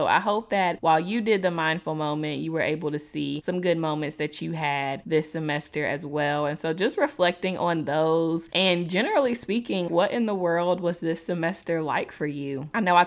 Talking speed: 210 wpm